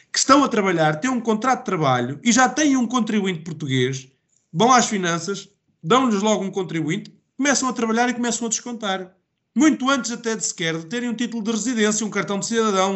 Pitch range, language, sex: 150-230 Hz, Portuguese, male